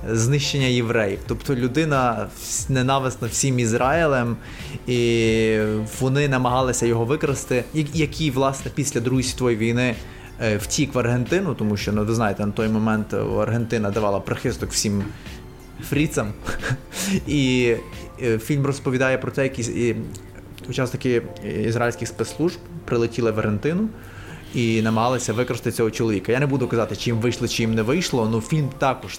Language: Ukrainian